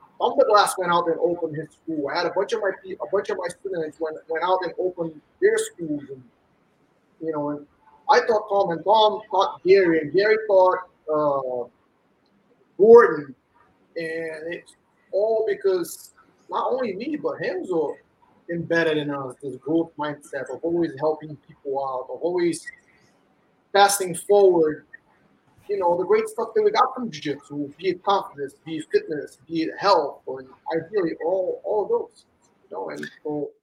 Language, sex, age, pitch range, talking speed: English, male, 30-49, 160-260 Hz, 175 wpm